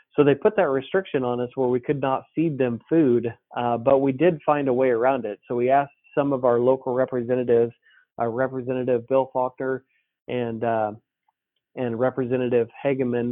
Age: 40-59